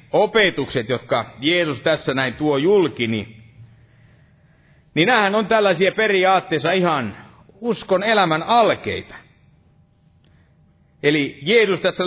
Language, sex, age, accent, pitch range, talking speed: Finnish, male, 50-69, native, 145-190 Hz, 100 wpm